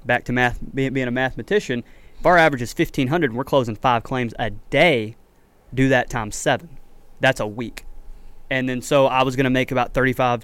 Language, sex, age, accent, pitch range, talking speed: English, male, 20-39, American, 120-145 Hz, 205 wpm